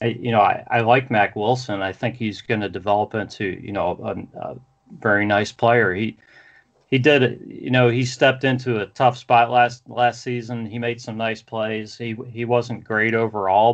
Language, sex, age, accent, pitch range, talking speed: English, male, 40-59, American, 100-120 Hz, 200 wpm